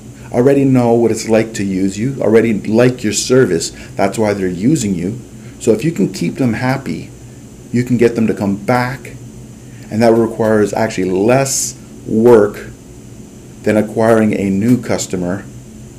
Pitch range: 110-125 Hz